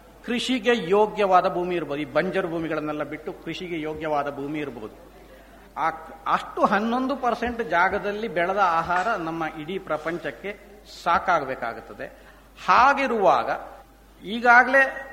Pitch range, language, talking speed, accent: 180-250 Hz, Kannada, 100 wpm, native